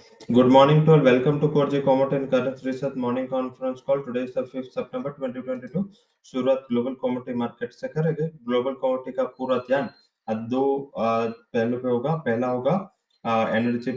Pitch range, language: 125-140 Hz, English